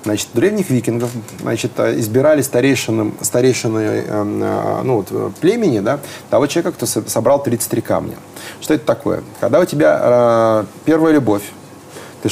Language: Russian